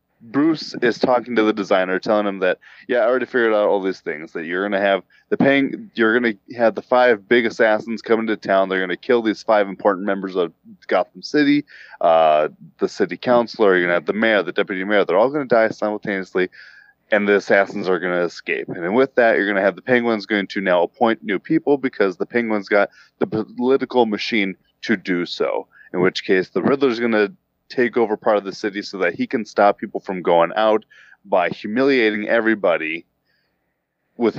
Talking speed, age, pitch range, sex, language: 215 wpm, 20-39, 95-120 Hz, male, English